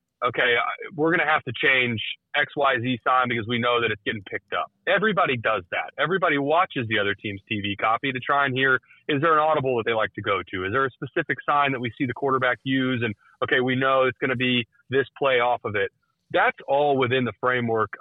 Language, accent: English, American